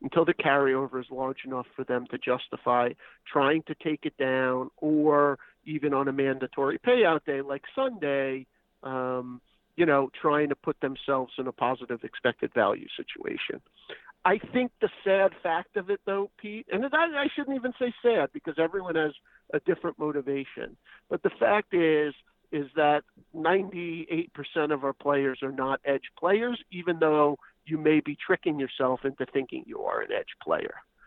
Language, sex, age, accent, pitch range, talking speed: English, male, 50-69, American, 135-185 Hz, 165 wpm